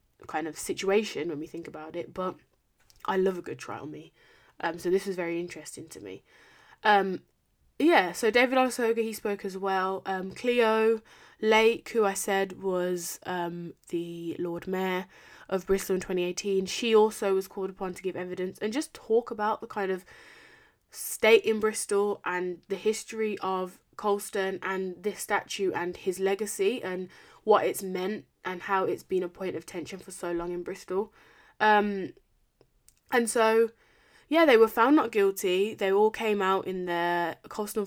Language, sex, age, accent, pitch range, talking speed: English, female, 20-39, British, 180-220 Hz, 175 wpm